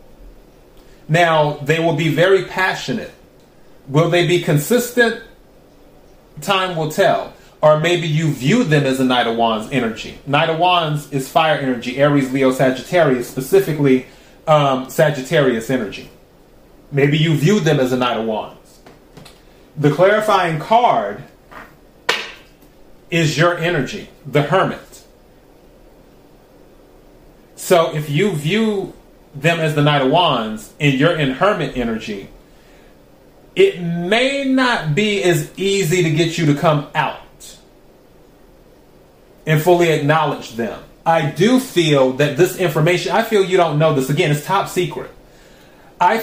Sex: male